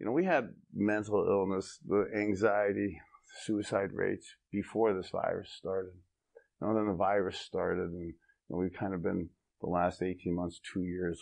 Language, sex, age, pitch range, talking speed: English, male, 50-69, 90-105 Hz, 160 wpm